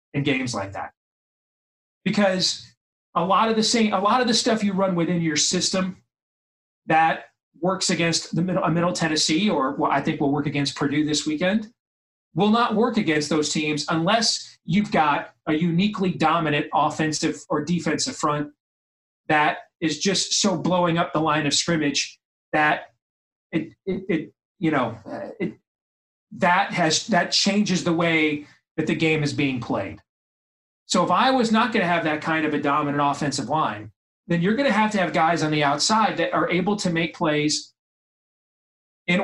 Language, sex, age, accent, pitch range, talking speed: English, male, 30-49, American, 150-190 Hz, 175 wpm